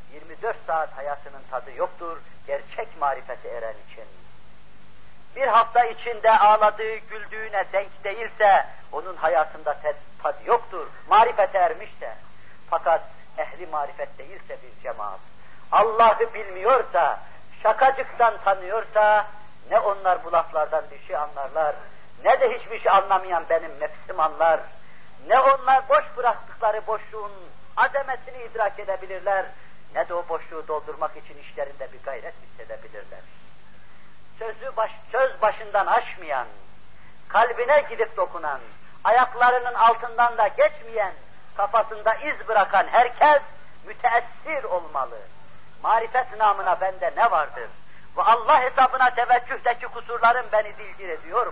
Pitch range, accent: 170-240 Hz, native